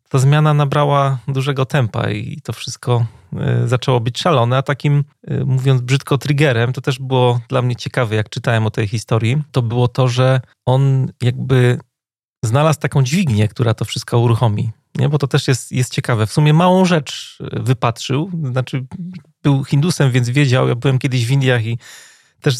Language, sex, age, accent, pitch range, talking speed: Polish, male, 30-49, native, 125-145 Hz, 170 wpm